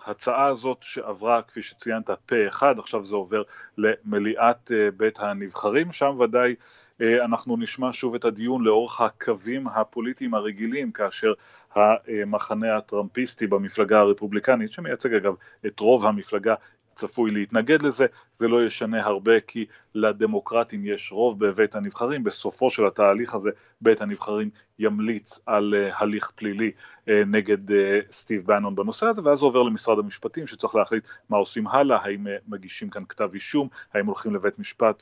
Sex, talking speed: male, 135 wpm